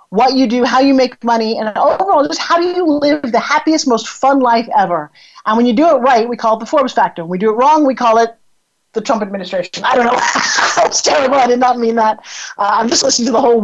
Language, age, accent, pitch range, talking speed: English, 40-59, American, 205-255 Hz, 265 wpm